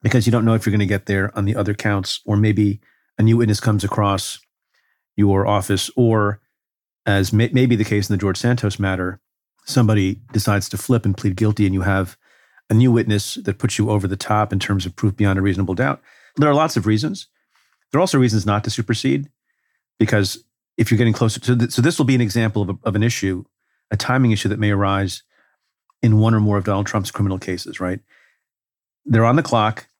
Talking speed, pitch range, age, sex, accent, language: 225 wpm, 100-115 Hz, 40-59, male, American, English